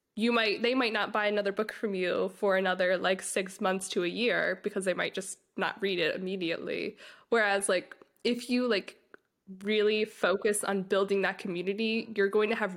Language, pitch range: English, 190-230 Hz